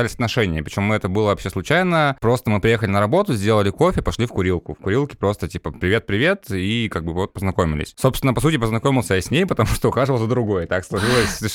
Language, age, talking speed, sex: Russian, 20-39, 210 wpm, male